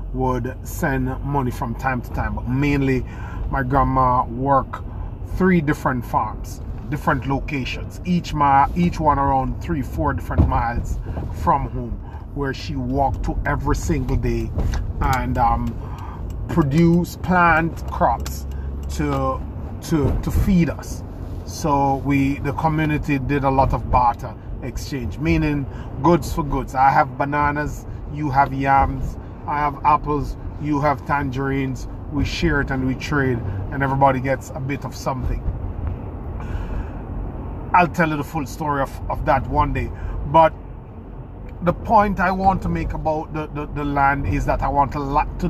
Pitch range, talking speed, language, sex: 105-150 Hz, 150 wpm, English, male